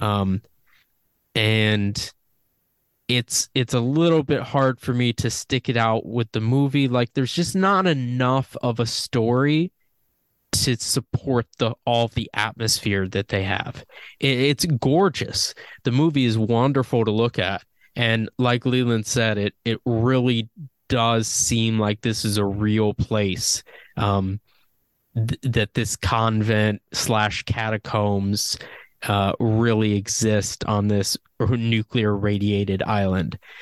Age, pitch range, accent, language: 20-39, 110-130 Hz, American, English